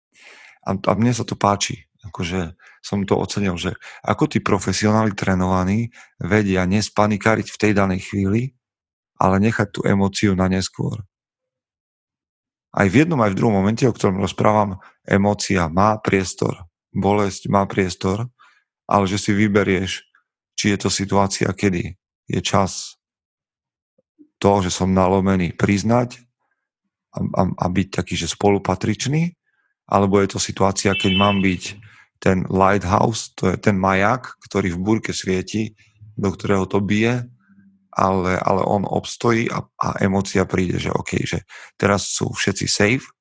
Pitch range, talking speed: 95-110 Hz, 140 wpm